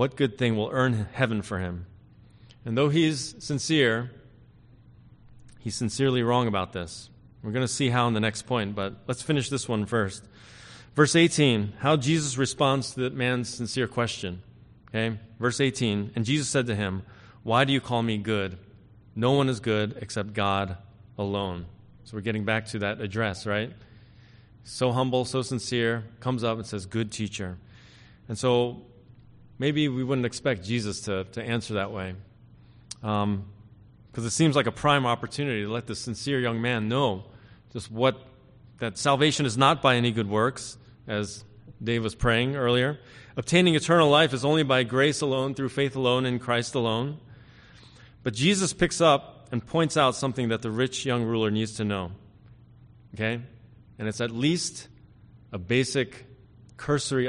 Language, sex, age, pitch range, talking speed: English, male, 30-49, 110-130 Hz, 170 wpm